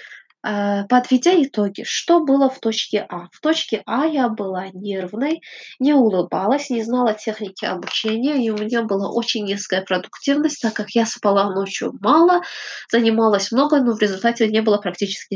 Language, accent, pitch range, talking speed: Russian, native, 205-265 Hz, 155 wpm